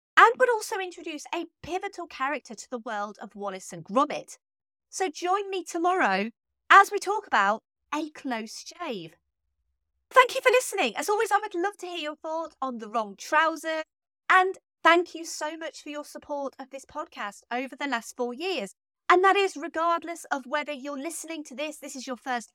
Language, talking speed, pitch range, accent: English, 190 wpm, 240-335 Hz, British